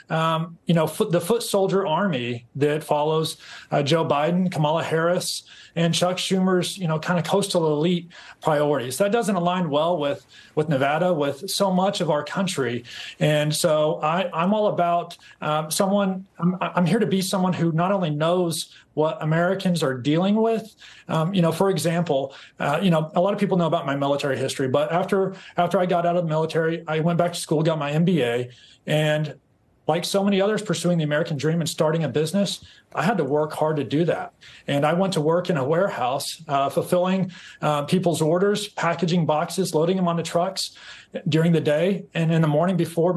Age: 30-49